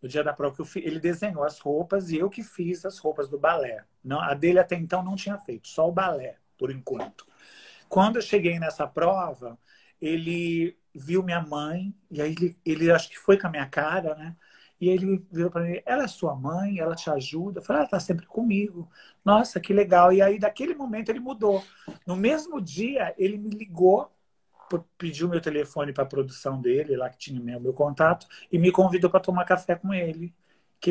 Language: Portuguese